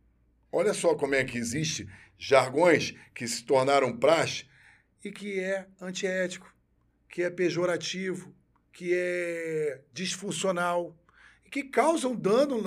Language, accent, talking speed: Portuguese, Brazilian, 120 wpm